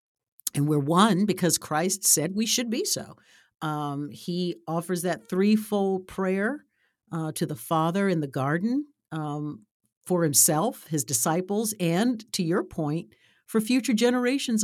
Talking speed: 145 wpm